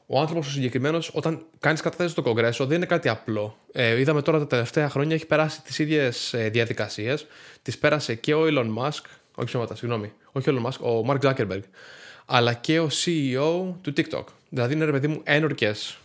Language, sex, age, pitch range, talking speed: Greek, male, 20-39, 125-155 Hz, 200 wpm